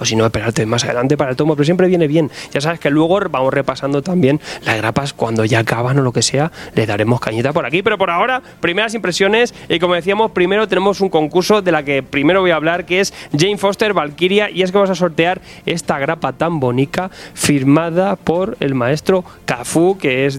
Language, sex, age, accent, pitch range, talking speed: Spanish, male, 20-39, Spanish, 140-190 Hz, 220 wpm